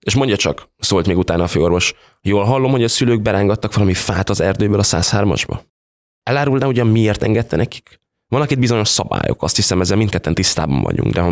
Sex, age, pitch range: male, 20-39, 90-120 Hz